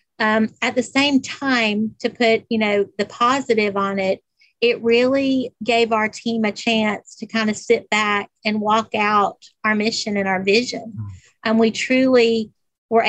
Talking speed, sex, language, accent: 170 wpm, female, English, American